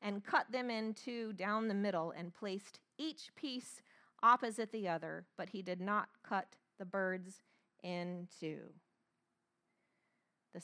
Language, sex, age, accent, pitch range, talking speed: English, female, 40-59, American, 195-260 Hz, 140 wpm